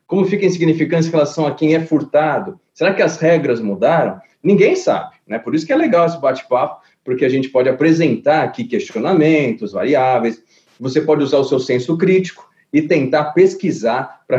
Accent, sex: Brazilian, male